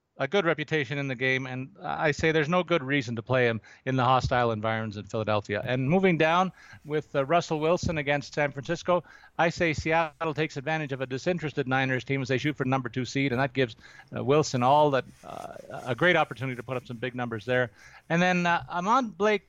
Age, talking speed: 40-59, 225 wpm